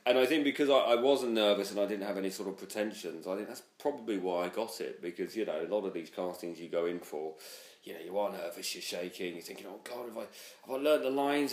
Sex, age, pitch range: male, 40-59, 90-105 Hz